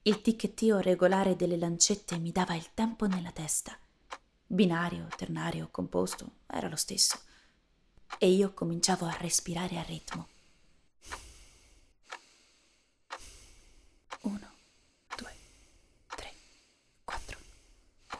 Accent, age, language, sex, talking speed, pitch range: native, 20-39, Italian, female, 90 wpm, 170-205 Hz